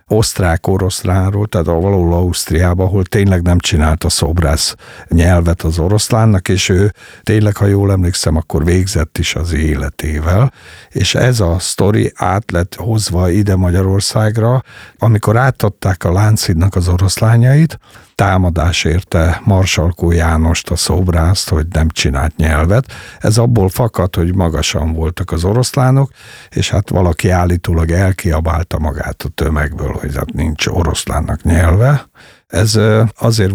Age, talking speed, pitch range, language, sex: 60-79, 130 wpm, 85-105 Hz, Hungarian, male